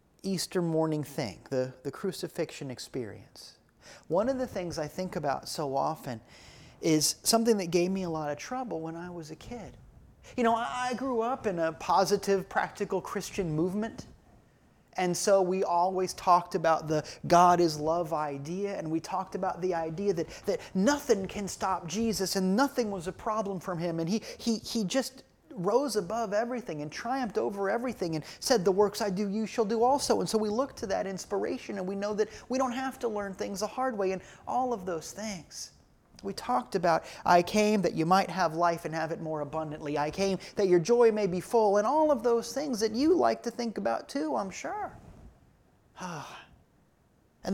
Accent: American